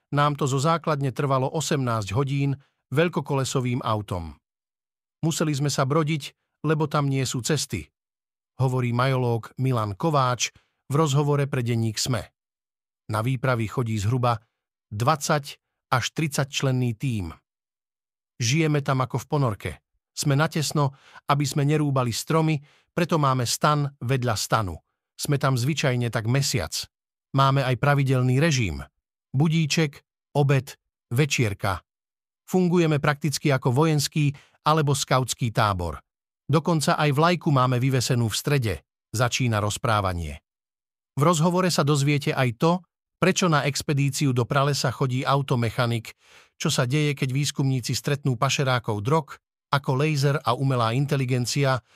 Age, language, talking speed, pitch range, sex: 50-69, Slovak, 125 wpm, 125-150 Hz, male